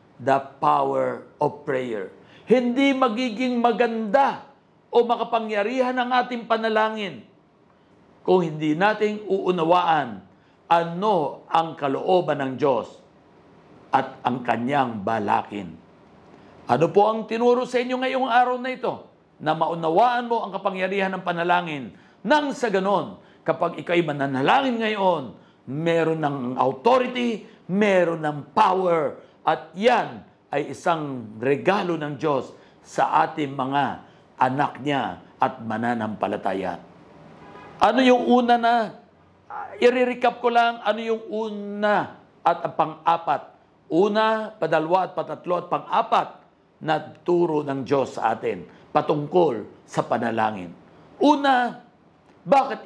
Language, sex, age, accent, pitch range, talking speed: Filipino, male, 50-69, native, 160-235 Hz, 110 wpm